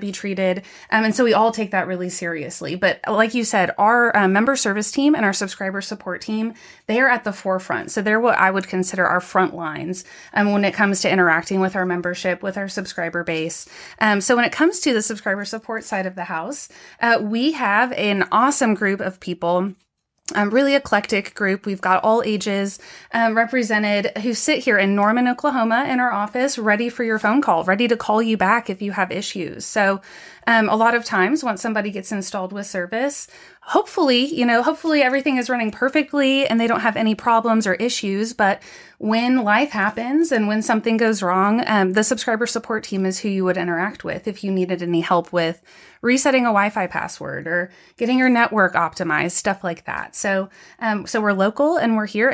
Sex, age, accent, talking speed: female, 20-39, American, 205 wpm